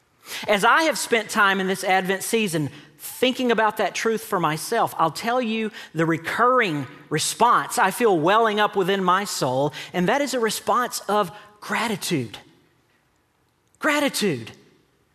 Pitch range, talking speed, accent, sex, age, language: 140-220 Hz, 145 wpm, American, male, 40-59, English